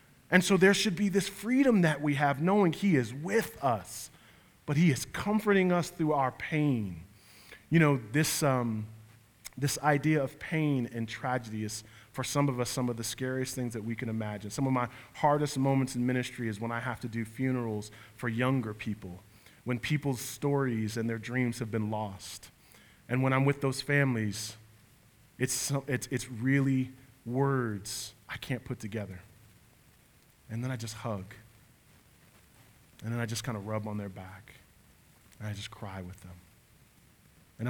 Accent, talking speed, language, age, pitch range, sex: American, 175 wpm, English, 30-49, 110-140 Hz, male